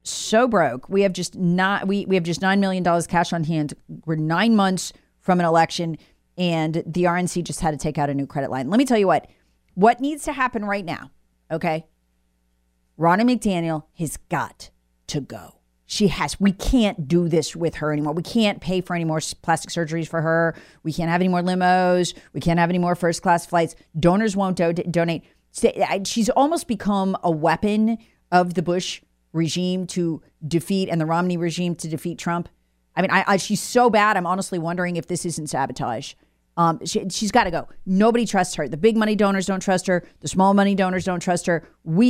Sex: female